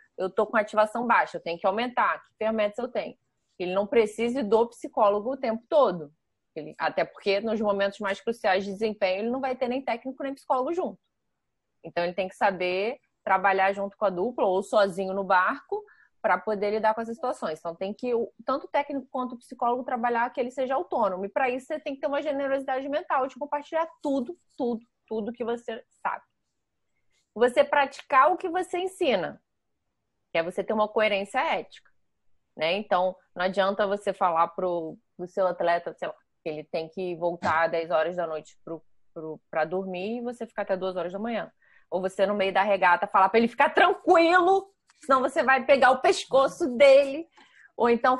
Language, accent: Portuguese, Brazilian